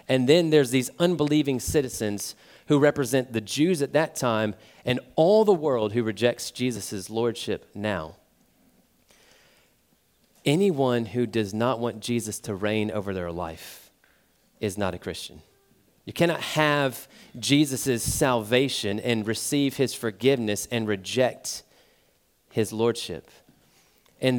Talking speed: 125 wpm